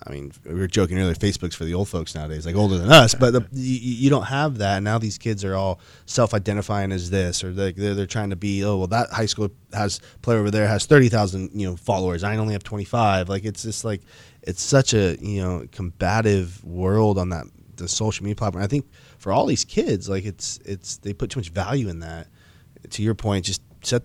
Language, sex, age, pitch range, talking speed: English, male, 20-39, 95-115 Hz, 240 wpm